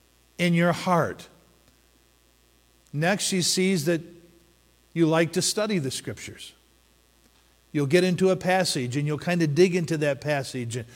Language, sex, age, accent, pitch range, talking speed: English, male, 50-69, American, 120-180 Hz, 140 wpm